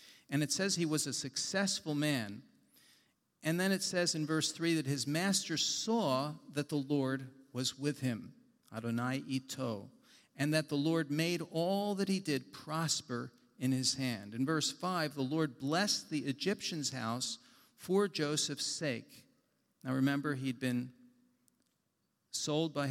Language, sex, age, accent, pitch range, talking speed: English, male, 50-69, American, 130-165 Hz, 150 wpm